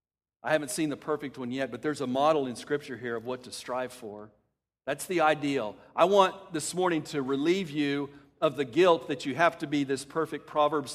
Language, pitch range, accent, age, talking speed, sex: English, 125-160 Hz, American, 50-69, 220 wpm, male